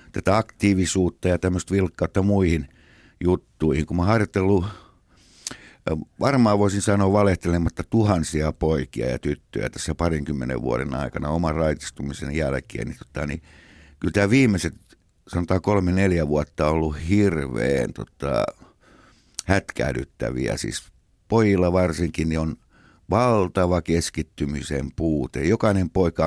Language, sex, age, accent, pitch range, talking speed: Finnish, male, 60-79, native, 80-100 Hz, 110 wpm